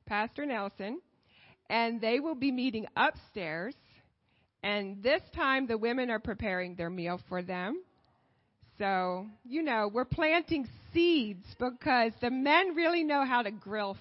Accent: American